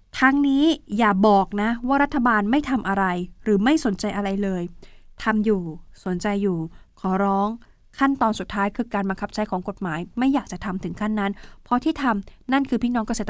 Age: 20-39